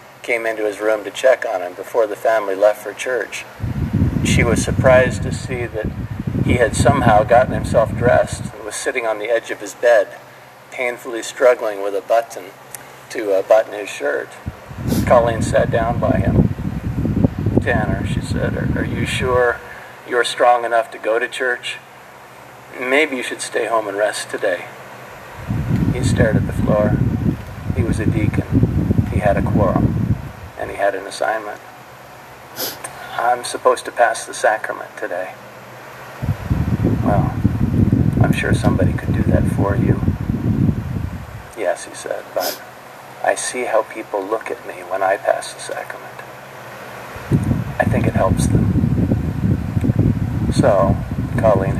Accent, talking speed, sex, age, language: American, 150 wpm, male, 50-69, Filipino